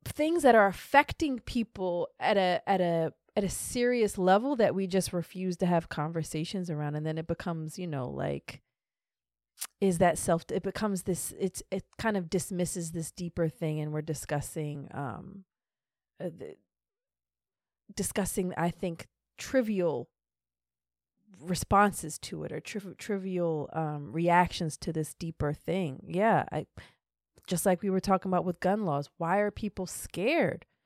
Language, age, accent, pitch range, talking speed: English, 30-49, American, 160-195 Hz, 155 wpm